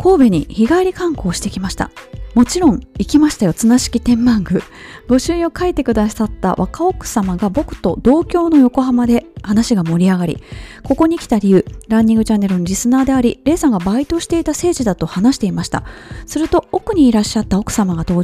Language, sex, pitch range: Japanese, female, 195-265 Hz